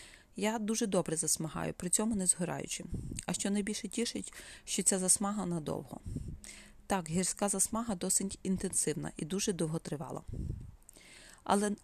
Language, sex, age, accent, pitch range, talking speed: Ukrainian, female, 30-49, native, 175-200 Hz, 125 wpm